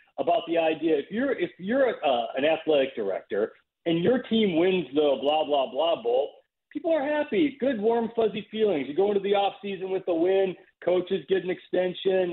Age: 40-59